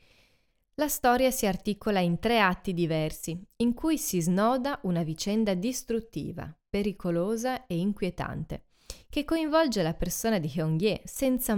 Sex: female